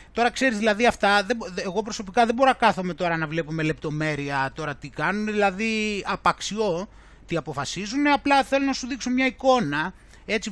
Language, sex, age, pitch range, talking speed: Greek, male, 30-49, 165-230 Hz, 170 wpm